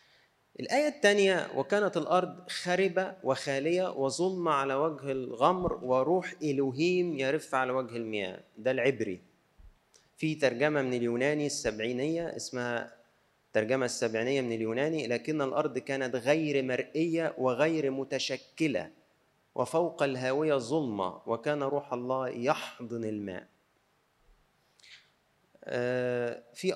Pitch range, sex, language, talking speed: 120-165 Hz, male, Arabic, 100 wpm